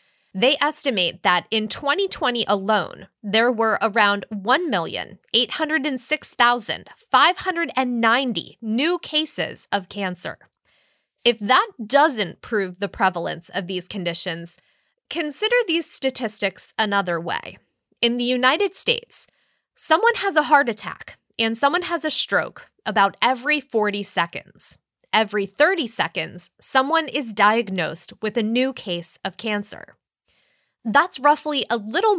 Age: 20-39